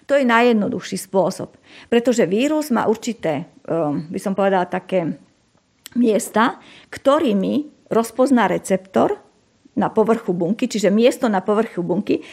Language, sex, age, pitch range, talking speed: Slovak, female, 50-69, 190-240 Hz, 115 wpm